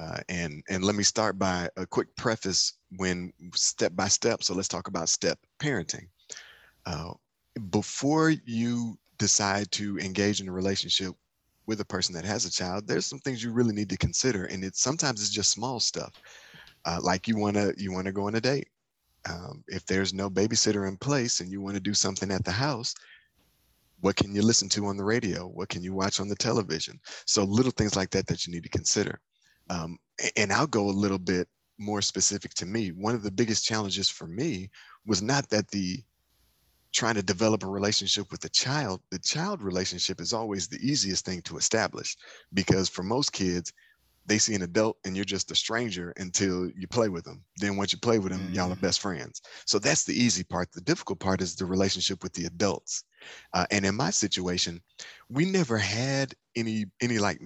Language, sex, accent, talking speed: English, male, American, 205 wpm